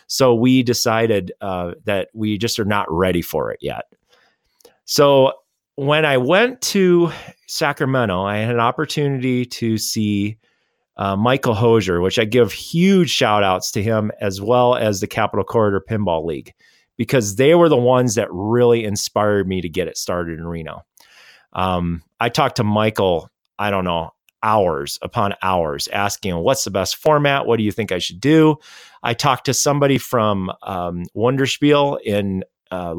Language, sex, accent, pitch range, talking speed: English, male, American, 95-125 Hz, 165 wpm